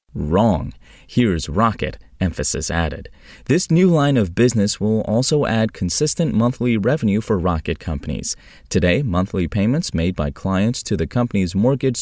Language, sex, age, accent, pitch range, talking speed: English, male, 30-49, American, 85-140 Hz, 145 wpm